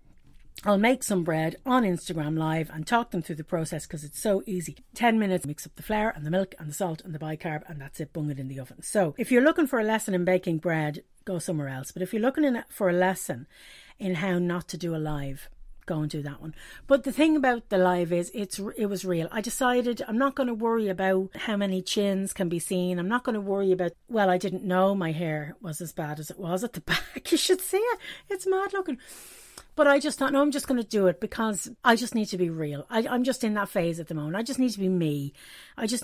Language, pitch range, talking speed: English, 170-240 Hz, 265 wpm